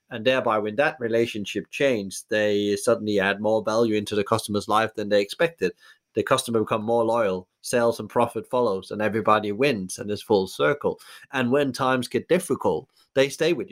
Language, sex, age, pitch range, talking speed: English, male, 30-49, 100-120 Hz, 185 wpm